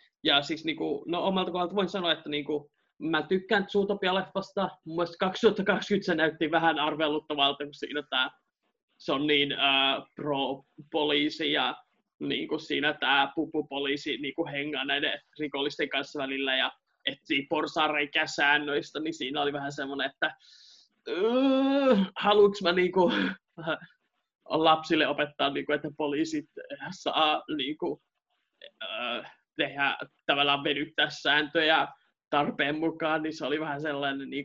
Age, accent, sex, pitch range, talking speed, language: 20-39, native, male, 140-170 Hz, 125 wpm, Finnish